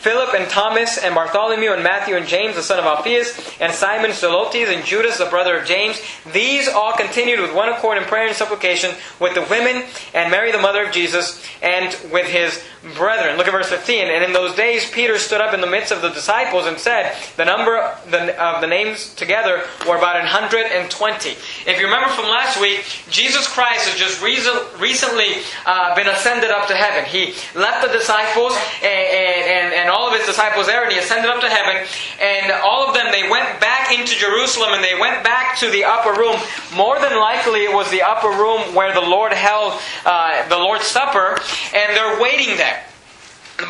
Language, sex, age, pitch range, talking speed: English, male, 20-39, 180-230 Hz, 205 wpm